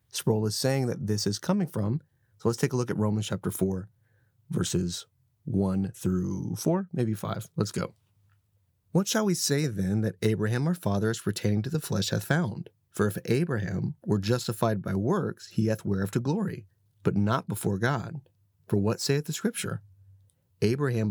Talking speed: 180 wpm